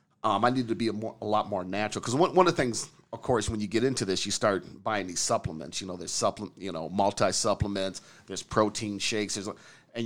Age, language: 40-59, English